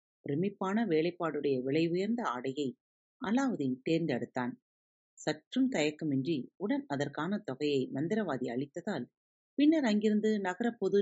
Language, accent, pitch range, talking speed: Tamil, native, 130-200 Hz, 100 wpm